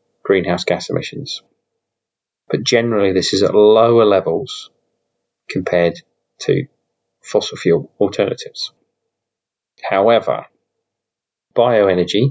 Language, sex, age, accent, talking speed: English, male, 30-49, British, 85 wpm